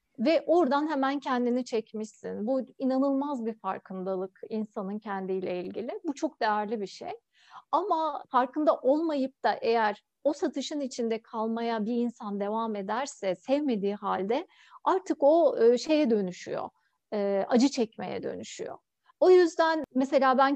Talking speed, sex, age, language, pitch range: 125 wpm, female, 50-69, Turkish, 215-285 Hz